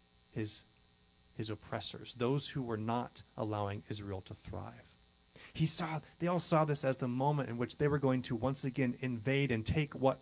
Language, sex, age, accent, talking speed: English, male, 40-59, American, 190 wpm